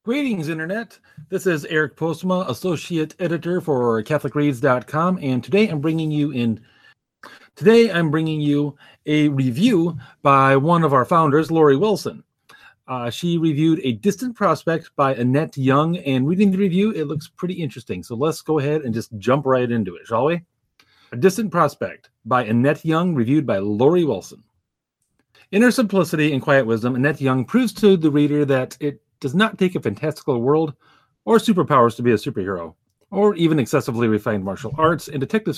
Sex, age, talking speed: male, 40-59, 170 wpm